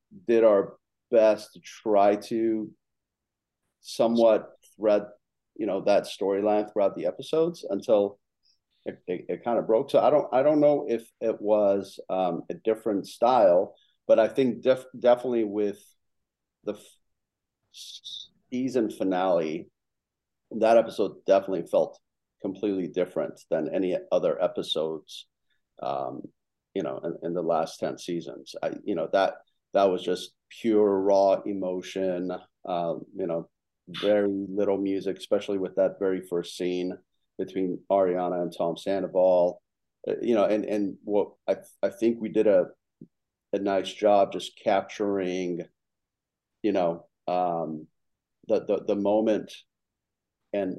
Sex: male